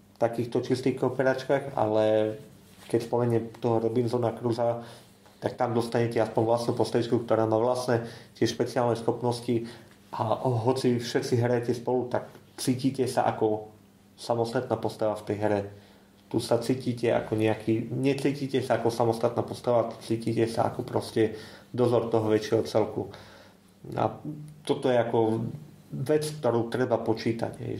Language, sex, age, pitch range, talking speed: Slovak, male, 30-49, 110-125 Hz, 135 wpm